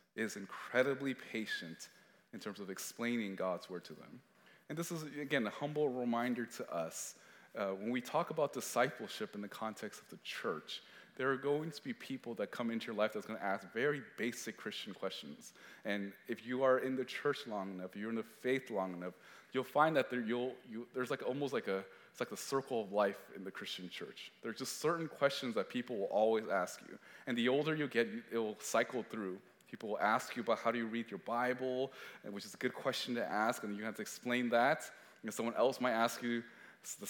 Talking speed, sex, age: 220 wpm, male, 20-39